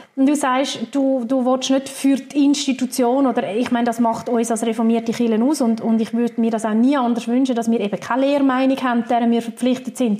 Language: German